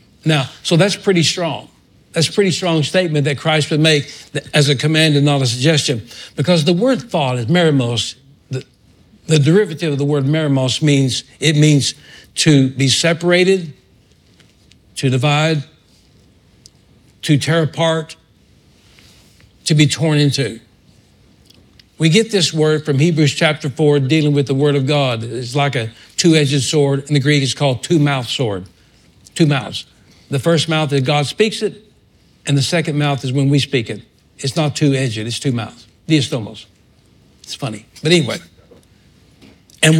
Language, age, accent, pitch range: English, 60-79, American, 135-170 Hz